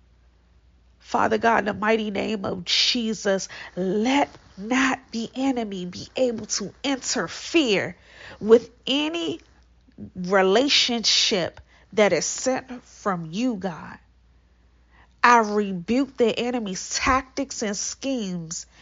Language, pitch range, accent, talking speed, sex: English, 170-240 Hz, American, 100 wpm, female